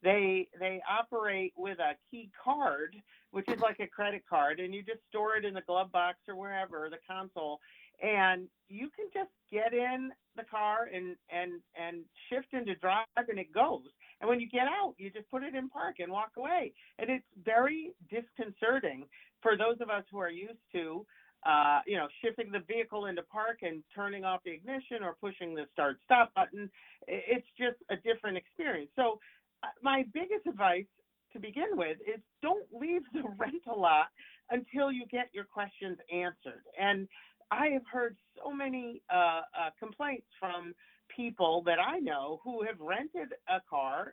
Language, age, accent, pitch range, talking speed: English, 50-69, American, 180-245 Hz, 175 wpm